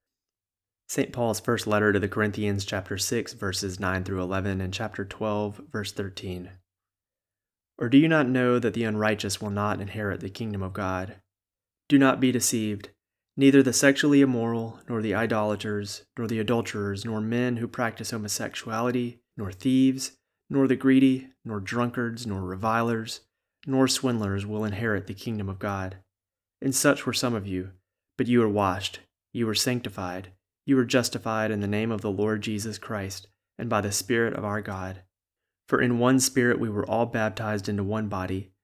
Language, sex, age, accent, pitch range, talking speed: English, male, 30-49, American, 100-120 Hz, 170 wpm